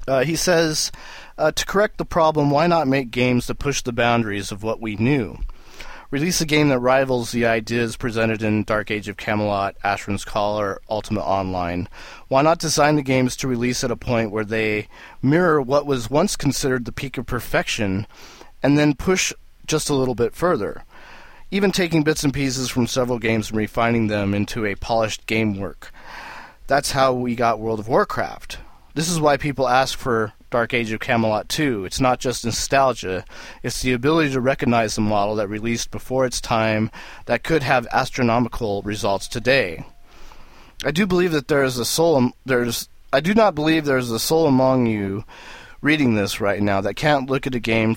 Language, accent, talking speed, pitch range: English, American, 190 wpm, 105-140 Hz